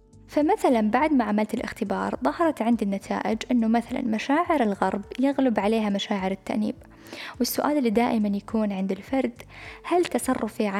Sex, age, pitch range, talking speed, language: female, 10-29, 205-245 Hz, 135 wpm, Arabic